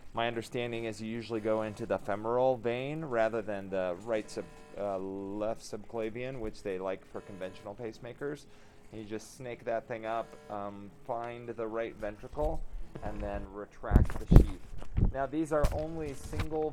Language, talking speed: English, 155 wpm